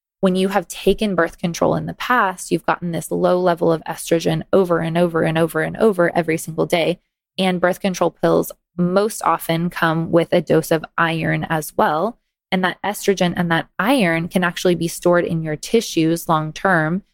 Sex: female